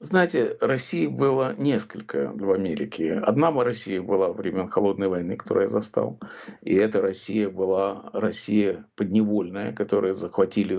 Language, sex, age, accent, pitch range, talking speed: Russian, male, 50-69, native, 105-180 Hz, 135 wpm